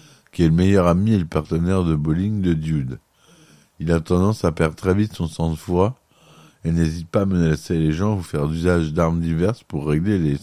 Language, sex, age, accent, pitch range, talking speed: French, male, 50-69, French, 80-100 Hz, 220 wpm